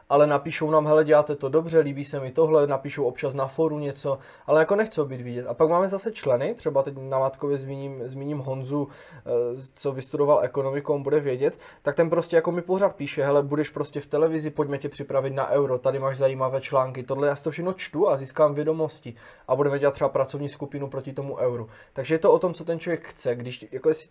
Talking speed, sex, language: 220 wpm, male, Czech